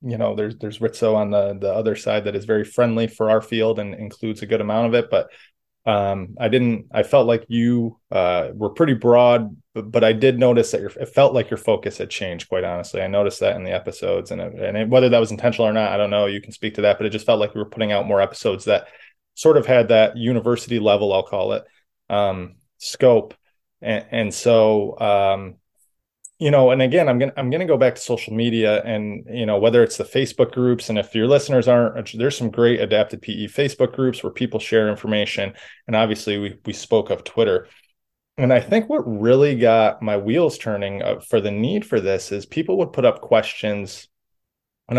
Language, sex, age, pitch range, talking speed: English, male, 20-39, 105-120 Hz, 225 wpm